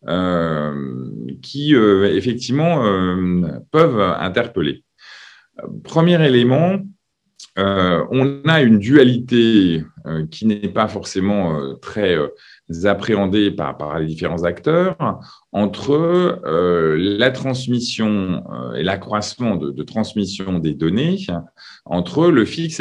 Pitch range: 85-125 Hz